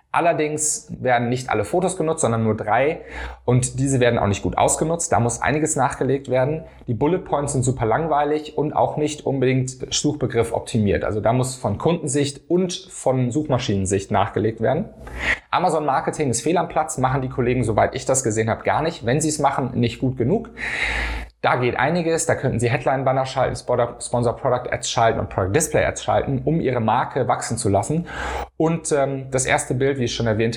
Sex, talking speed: male, 185 wpm